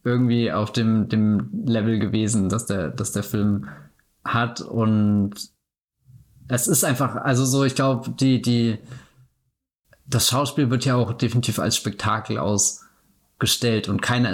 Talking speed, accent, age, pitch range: 140 wpm, German, 20-39, 110-130 Hz